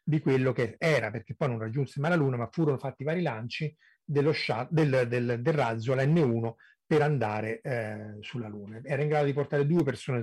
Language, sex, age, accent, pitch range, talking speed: Italian, male, 30-49, native, 130-155 Hz, 215 wpm